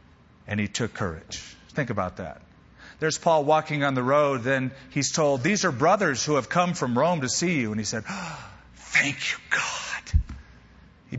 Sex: male